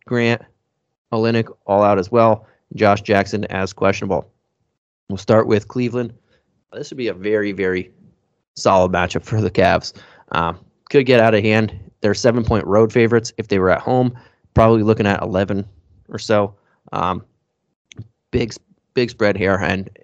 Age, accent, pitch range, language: 30-49, American, 95-115 Hz, English